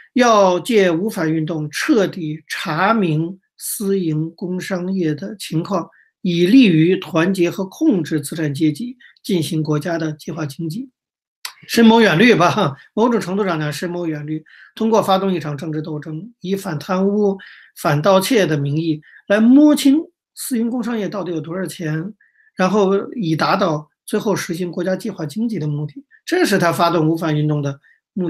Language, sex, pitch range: Chinese, male, 160-210 Hz